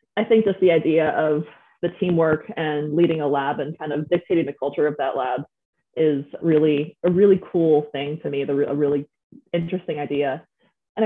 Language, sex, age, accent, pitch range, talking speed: English, female, 20-39, American, 150-185 Hz, 185 wpm